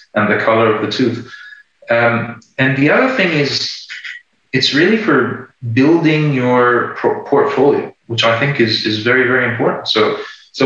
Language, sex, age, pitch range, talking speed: English, male, 30-49, 110-130 Hz, 160 wpm